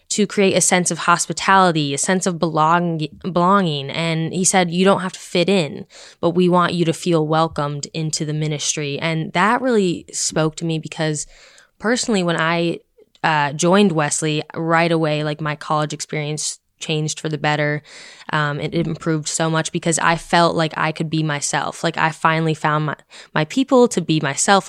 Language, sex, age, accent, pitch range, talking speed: English, female, 10-29, American, 155-180 Hz, 185 wpm